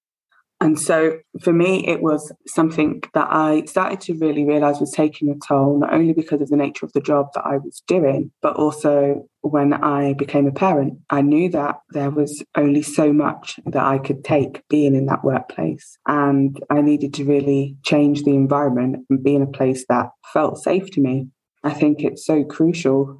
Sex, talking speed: female, 195 wpm